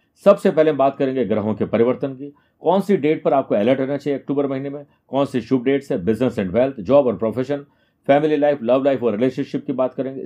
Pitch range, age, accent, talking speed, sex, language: 130-155 Hz, 50-69, native, 240 wpm, male, Hindi